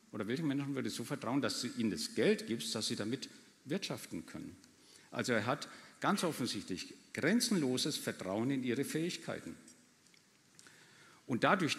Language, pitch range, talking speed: German, 115-145 Hz, 150 wpm